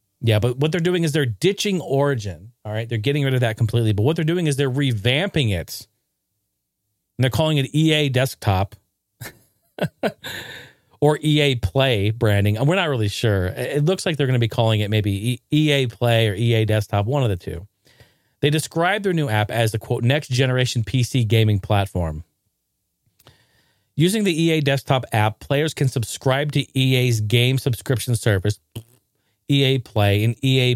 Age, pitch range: 40-59, 105-135 Hz